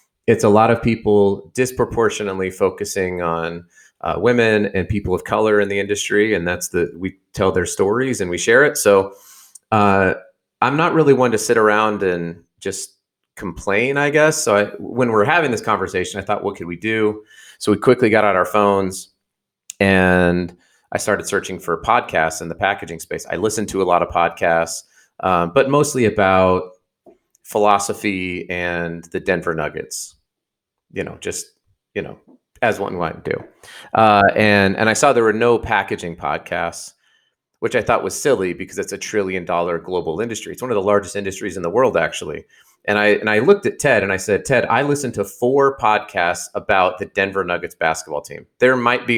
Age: 30-49